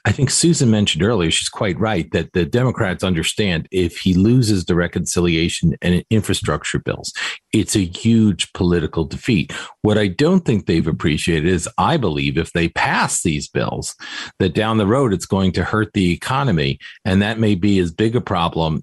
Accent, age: American, 40-59